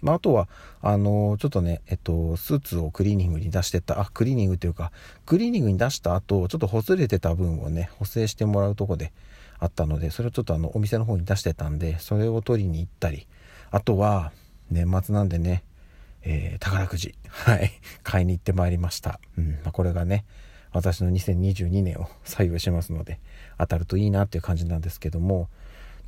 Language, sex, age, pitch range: Japanese, male, 40-59, 85-110 Hz